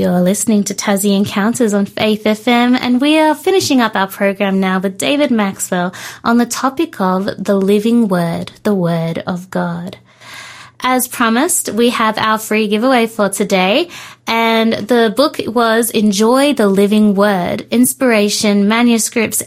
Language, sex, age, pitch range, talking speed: English, female, 20-39, 195-245 Hz, 150 wpm